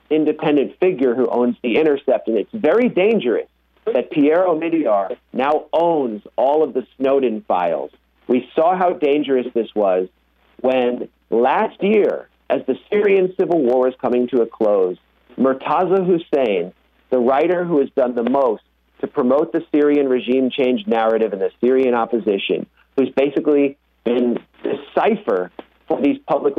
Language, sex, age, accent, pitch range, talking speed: English, male, 50-69, American, 120-165 Hz, 150 wpm